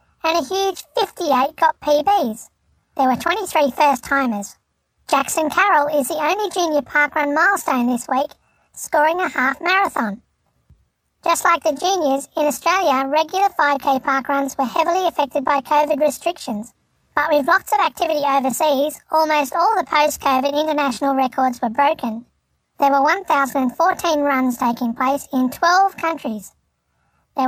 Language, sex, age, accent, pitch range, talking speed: English, male, 10-29, Australian, 265-325 Hz, 140 wpm